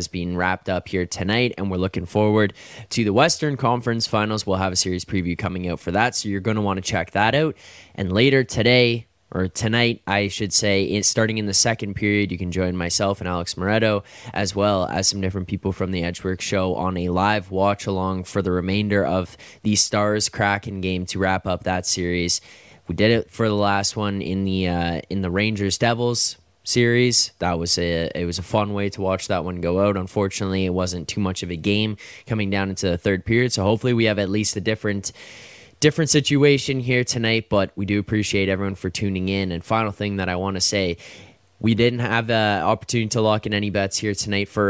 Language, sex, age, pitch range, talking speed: English, male, 10-29, 95-110 Hz, 220 wpm